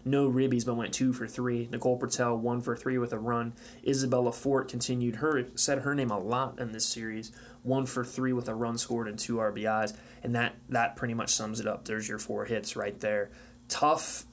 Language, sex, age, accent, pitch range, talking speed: English, male, 20-39, American, 115-130 Hz, 220 wpm